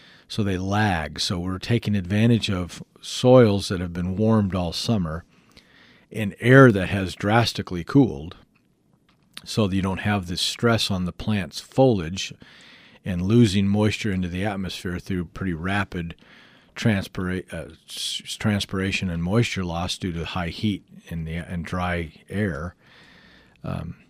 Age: 50-69